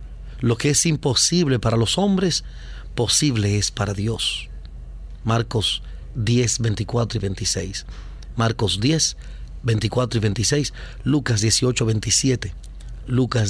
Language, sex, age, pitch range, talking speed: Spanish, male, 40-59, 105-145 Hz, 110 wpm